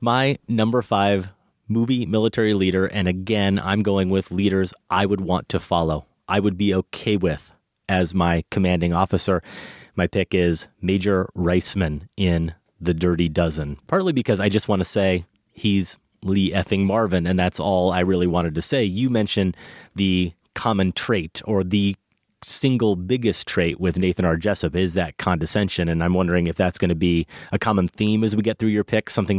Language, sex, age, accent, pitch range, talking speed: English, male, 30-49, American, 90-105 Hz, 180 wpm